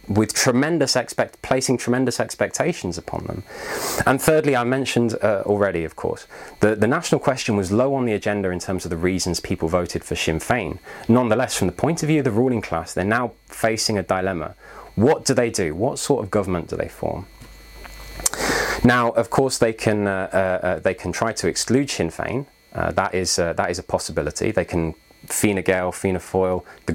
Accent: British